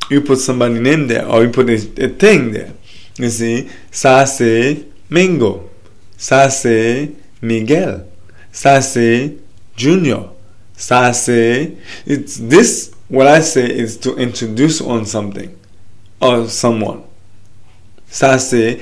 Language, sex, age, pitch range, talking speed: English, male, 20-39, 105-125 Hz, 110 wpm